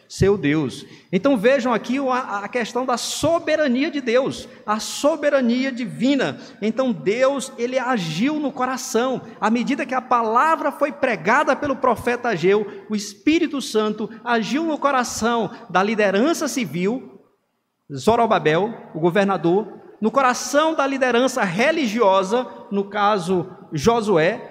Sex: male